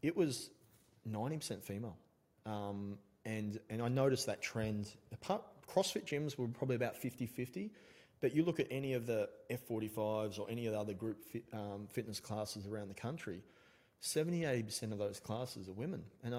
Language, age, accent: English, 30-49, Australian